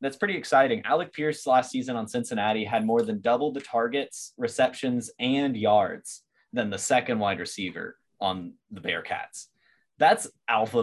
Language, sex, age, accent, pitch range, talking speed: English, male, 10-29, American, 100-145 Hz, 155 wpm